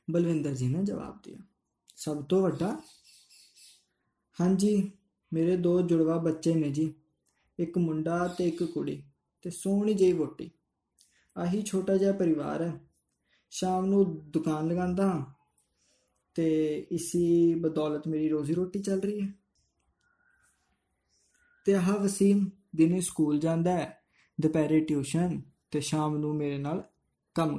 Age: 20-39